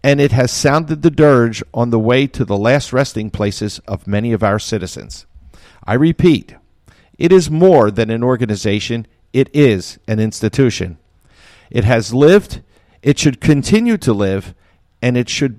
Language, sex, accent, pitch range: English, male, American, 110-150 Hz